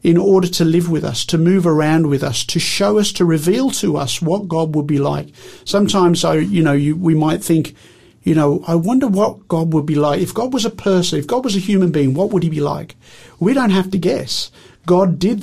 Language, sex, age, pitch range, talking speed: English, male, 50-69, 145-175 Hz, 235 wpm